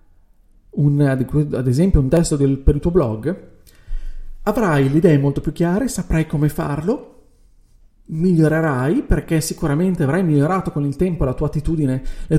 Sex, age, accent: male, 40-59, native